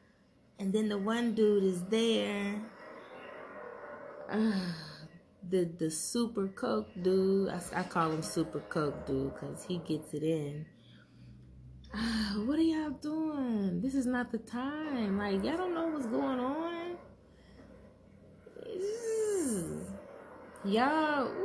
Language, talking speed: English, 120 wpm